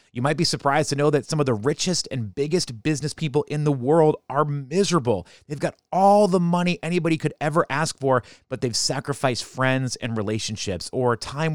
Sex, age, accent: male, 30-49, American